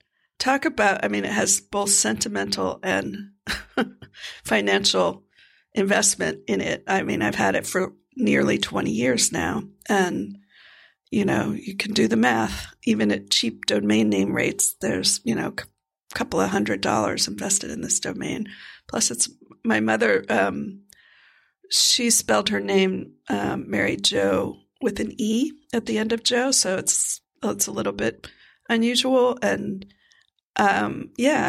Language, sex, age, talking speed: English, female, 50-69, 150 wpm